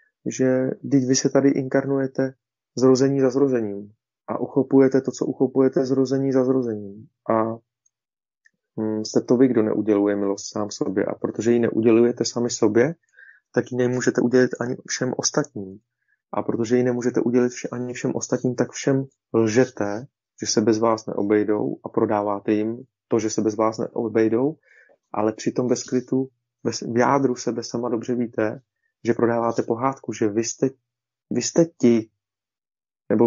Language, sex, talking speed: Czech, male, 150 wpm